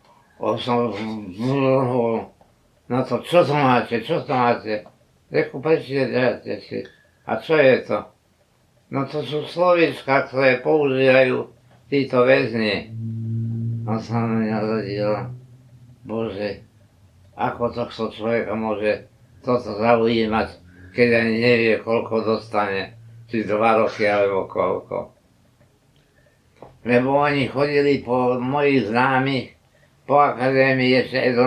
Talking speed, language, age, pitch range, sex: 115 wpm, Slovak, 60-79, 110-130 Hz, male